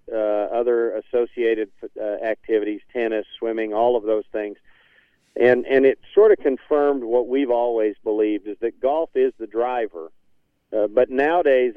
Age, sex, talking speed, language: 50-69, male, 155 wpm, English